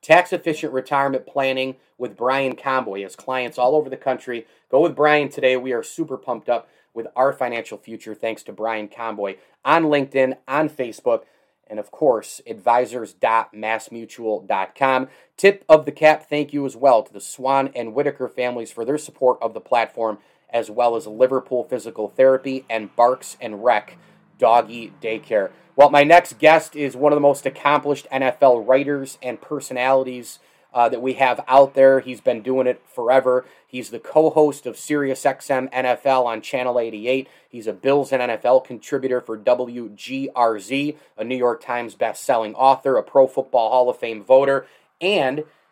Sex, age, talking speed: male, 30-49, 165 wpm